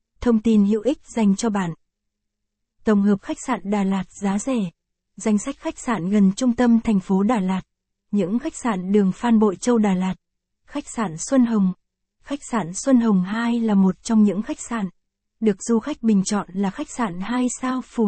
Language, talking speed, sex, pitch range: Vietnamese, 205 wpm, female, 195-240 Hz